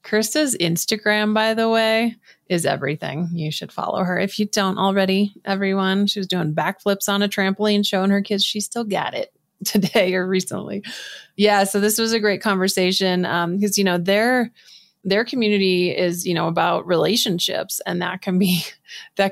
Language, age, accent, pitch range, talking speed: English, 30-49, American, 170-200 Hz, 175 wpm